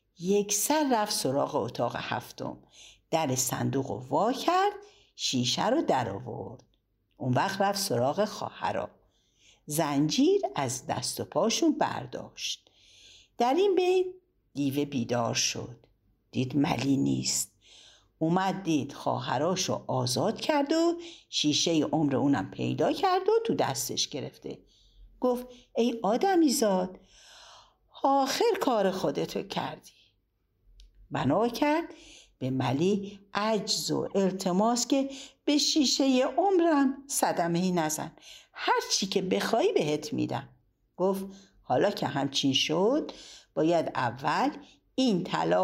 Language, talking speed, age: Persian, 110 wpm, 60-79